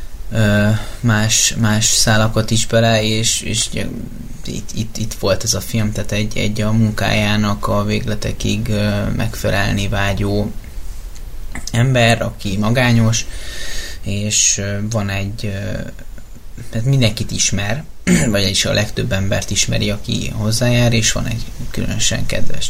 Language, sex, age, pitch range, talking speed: Hungarian, male, 20-39, 105-115 Hz, 115 wpm